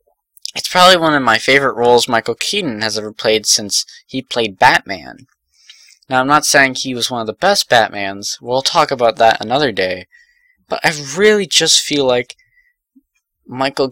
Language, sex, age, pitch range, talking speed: English, male, 10-29, 110-170 Hz, 170 wpm